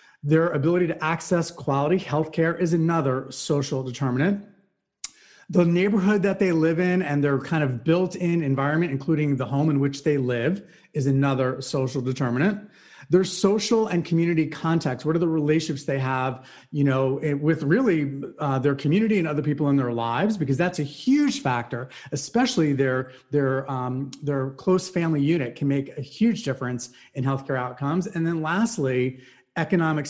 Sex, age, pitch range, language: male, 30-49, 140-175 Hz, English